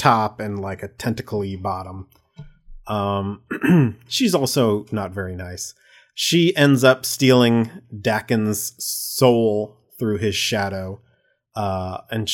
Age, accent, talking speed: 30-49, American, 110 wpm